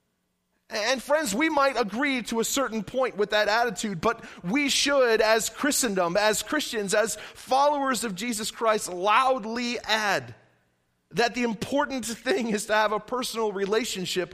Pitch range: 150-230 Hz